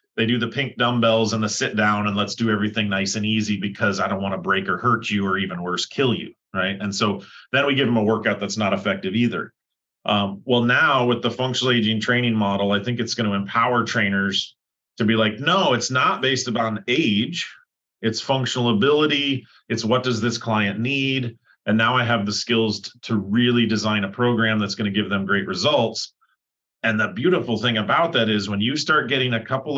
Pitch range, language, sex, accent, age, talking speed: 105-140 Hz, English, male, American, 30-49, 220 wpm